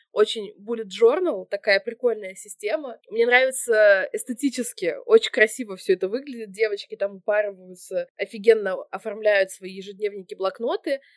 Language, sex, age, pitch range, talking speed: Russian, female, 20-39, 200-275 Hz, 115 wpm